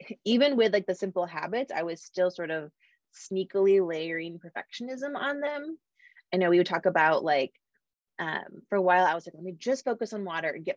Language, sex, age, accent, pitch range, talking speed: English, female, 20-39, American, 165-225 Hz, 210 wpm